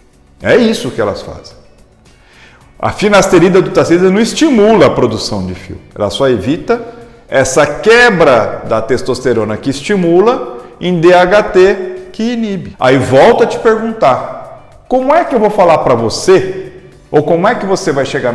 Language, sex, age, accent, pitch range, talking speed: Portuguese, male, 50-69, Brazilian, 120-190 Hz, 155 wpm